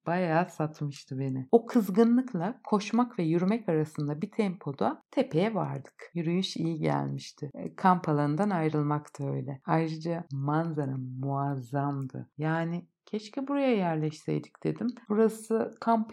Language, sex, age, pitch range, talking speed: Turkish, female, 60-79, 150-190 Hz, 115 wpm